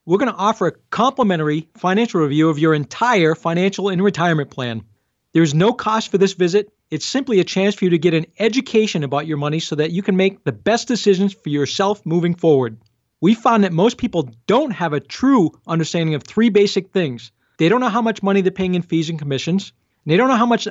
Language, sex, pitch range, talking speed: English, male, 165-230 Hz, 225 wpm